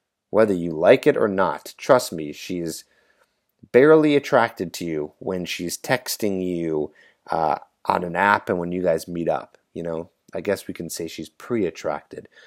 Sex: male